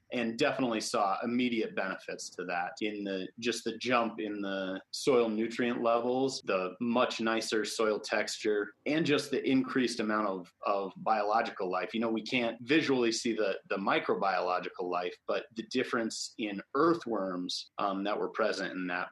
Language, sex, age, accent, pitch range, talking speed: English, male, 30-49, American, 105-120 Hz, 165 wpm